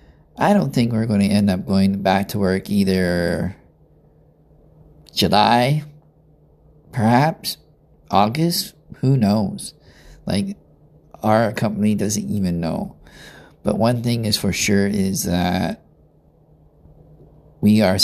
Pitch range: 100-115 Hz